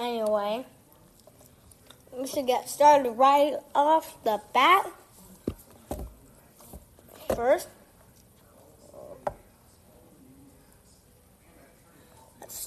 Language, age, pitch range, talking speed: English, 20-39, 240-290 Hz, 50 wpm